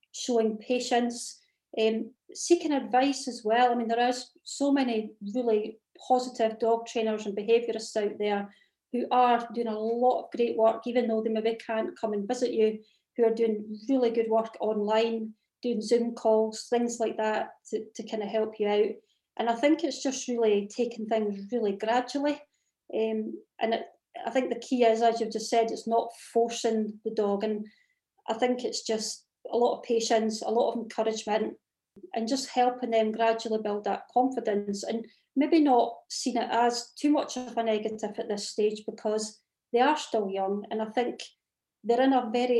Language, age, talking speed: English, 30-49, 185 wpm